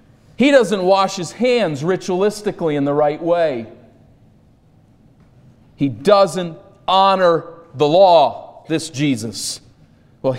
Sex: male